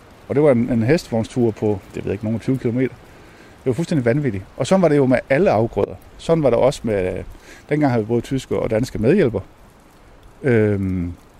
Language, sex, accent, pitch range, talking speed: Danish, male, native, 95-135 Hz, 205 wpm